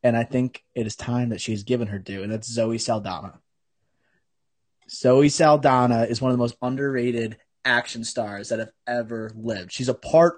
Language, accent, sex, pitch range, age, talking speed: English, American, male, 120-135 Hz, 20-39, 185 wpm